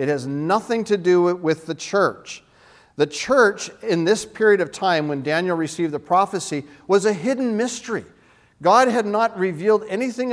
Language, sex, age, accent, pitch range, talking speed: English, male, 50-69, American, 145-210 Hz, 170 wpm